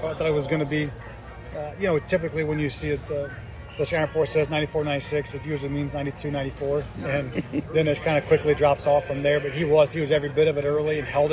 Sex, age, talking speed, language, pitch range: male, 20-39, 245 wpm, English, 135-155 Hz